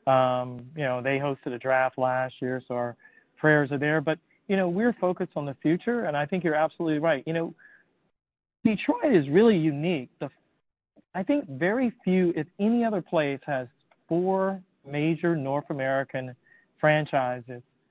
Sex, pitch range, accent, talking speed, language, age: male, 135-165 Hz, American, 165 wpm, English, 40-59